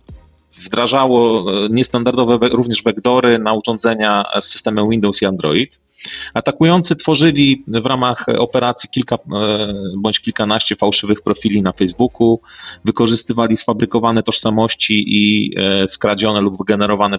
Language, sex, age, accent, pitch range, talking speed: Polish, male, 30-49, native, 95-115 Hz, 105 wpm